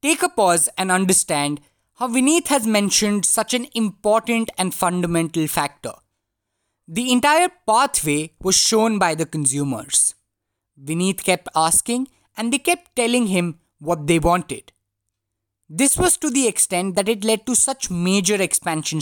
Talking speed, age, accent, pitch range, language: 145 wpm, 20-39, Indian, 165-230 Hz, English